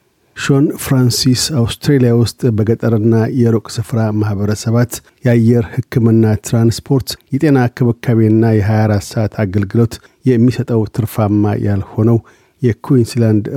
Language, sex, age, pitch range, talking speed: Amharic, male, 50-69, 105-120 Hz, 85 wpm